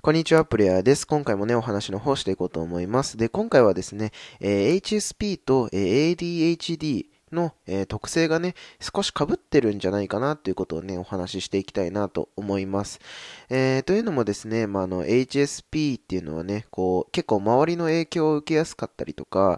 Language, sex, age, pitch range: Japanese, male, 20-39, 95-150 Hz